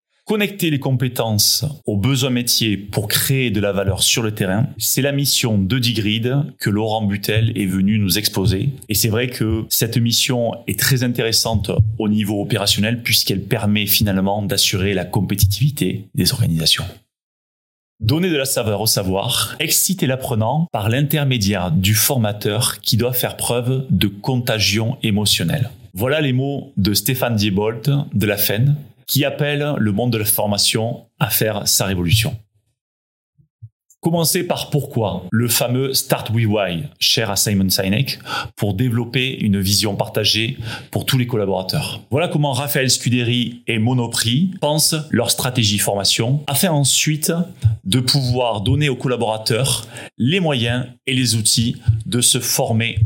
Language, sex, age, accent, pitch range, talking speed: French, male, 30-49, French, 105-135 Hz, 150 wpm